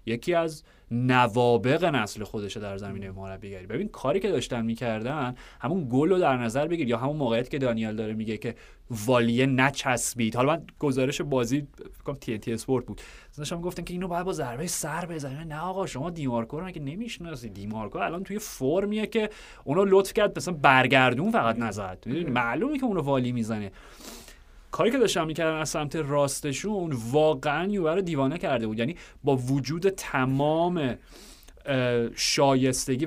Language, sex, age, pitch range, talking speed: Persian, male, 30-49, 115-155 Hz, 160 wpm